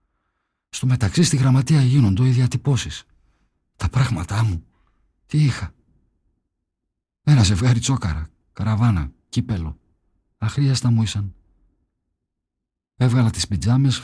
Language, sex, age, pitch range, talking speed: Greek, male, 50-69, 85-115 Hz, 100 wpm